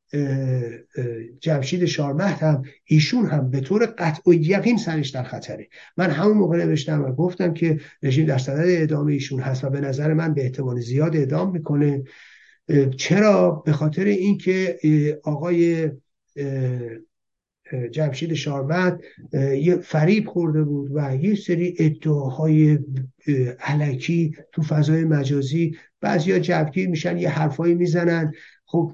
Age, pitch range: 50-69, 140-170 Hz